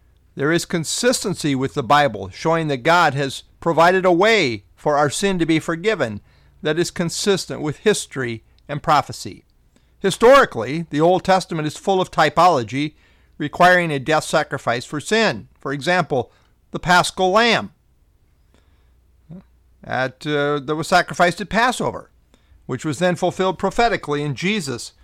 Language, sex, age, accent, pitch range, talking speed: English, male, 50-69, American, 140-180 Hz, 140 wpm